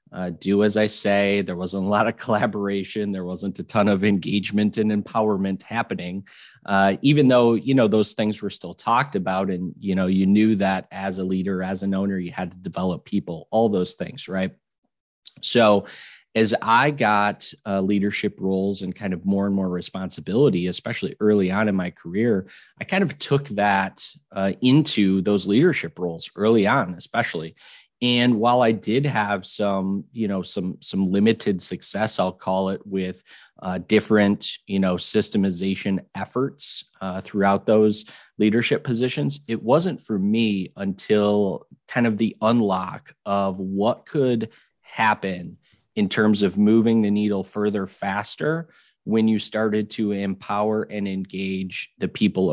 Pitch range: 95-110 Hz